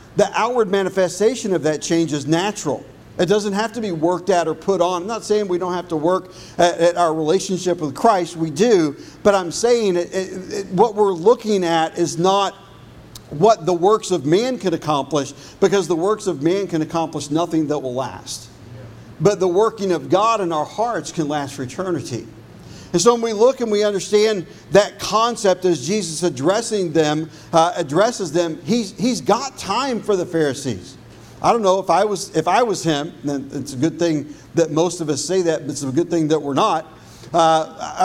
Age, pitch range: 50-69, 155-200 Hz